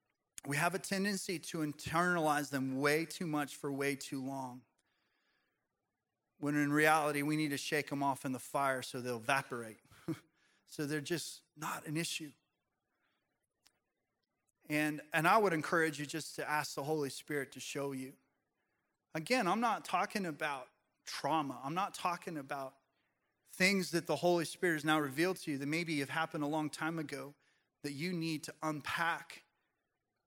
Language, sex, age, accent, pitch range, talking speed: English, male, 30-49, American, 135-160 Hz, 165 wpm